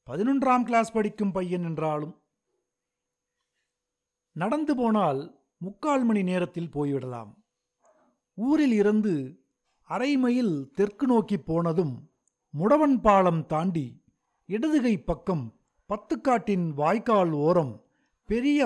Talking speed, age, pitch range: 85 wpm, 50-69, 155-225 Hz